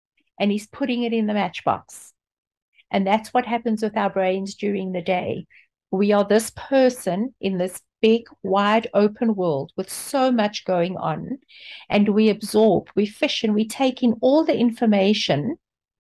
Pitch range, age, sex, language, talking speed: 200-240 Hz, 60-79, female, English, 165 wpm